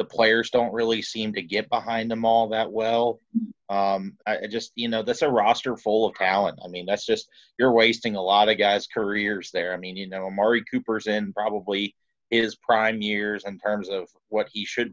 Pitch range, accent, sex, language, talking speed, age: 100-115 Hz, American, male, English, 210 wpm, 30-49